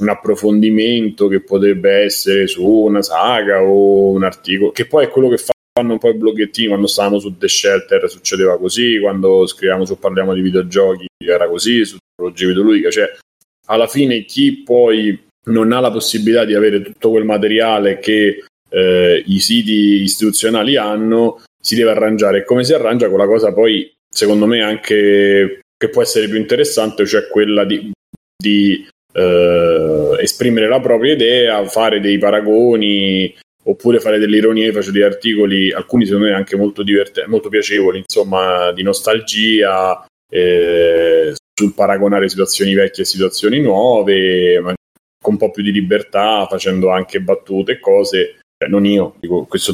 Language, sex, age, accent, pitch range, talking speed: Italian, male, 30-49, native, 95-115 Hz, 160 wpm